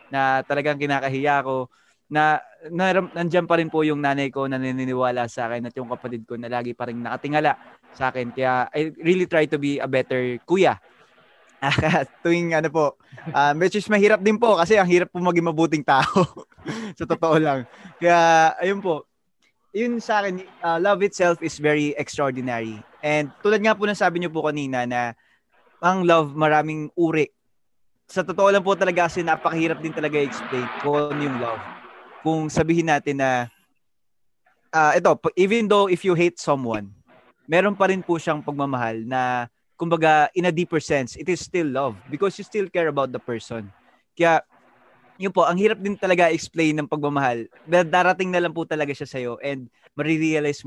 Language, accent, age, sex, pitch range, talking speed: English, Filipino, 20-39, male, 130-175 Hz, 175 wpm